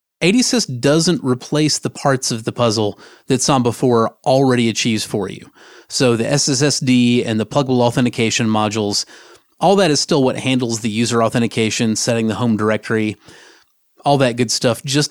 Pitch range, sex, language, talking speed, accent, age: 110-135 Hz, male, English, 165 wpm, American, 30-49